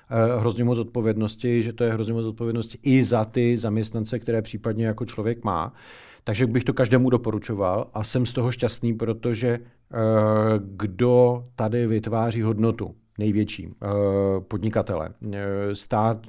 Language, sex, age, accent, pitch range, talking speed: Czech, male, 50-69, native, 105-125 Hz, 145 wpm